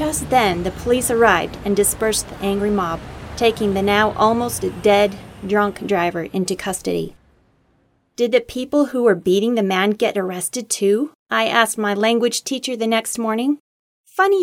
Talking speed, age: 160 wpm, 30-49